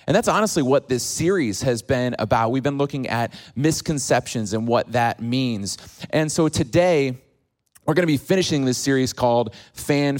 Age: 30-49